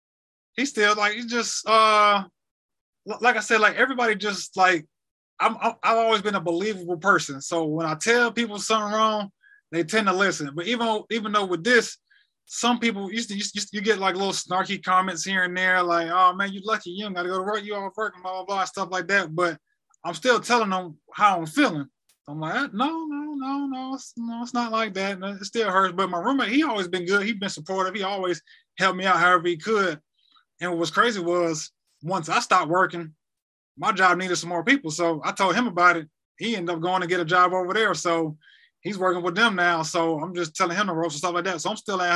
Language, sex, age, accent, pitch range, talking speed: English, male, 20-39, American, 170-215 Hz, 240 wpm